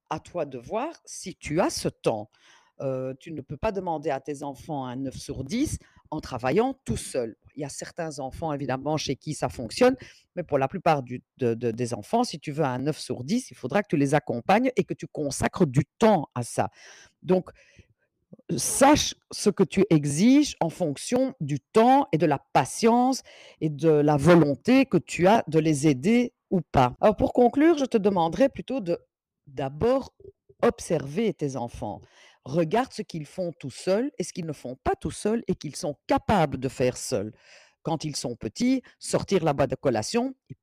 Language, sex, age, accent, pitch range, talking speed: French, female, 50-69, French, 145-230 Hz, 200 wpm